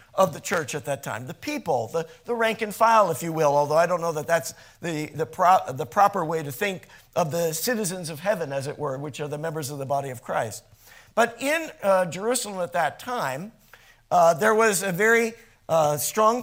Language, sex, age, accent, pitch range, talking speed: English, male, 50-69, American, 170-230 Hz, 225 wpm